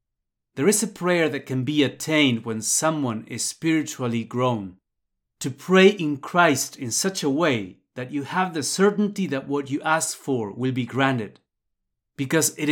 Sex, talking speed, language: male, 170 wpm, English